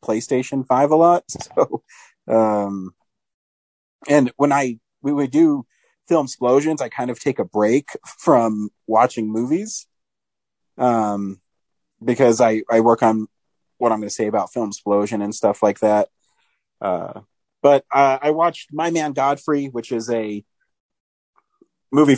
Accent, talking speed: American, 145 wpm